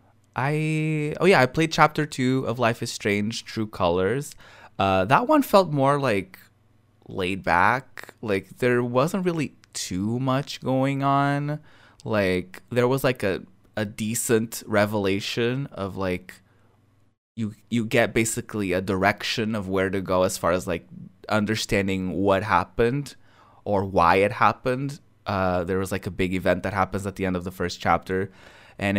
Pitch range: 100-130 Hz